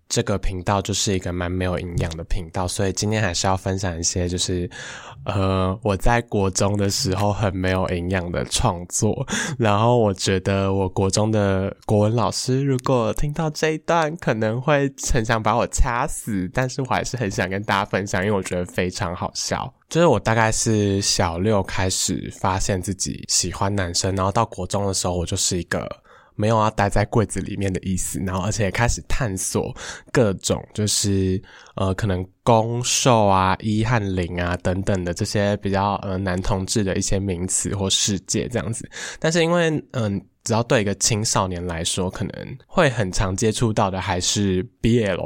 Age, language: 20-39, Chinese